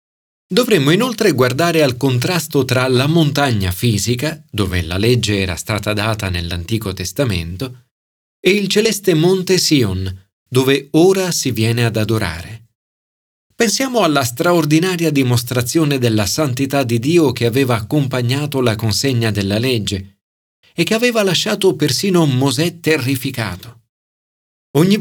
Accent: native